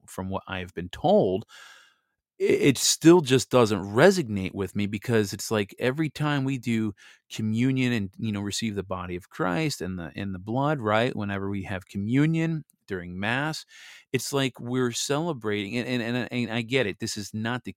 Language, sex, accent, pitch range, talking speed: English, male, American, 100-130 Hz, 185 wpm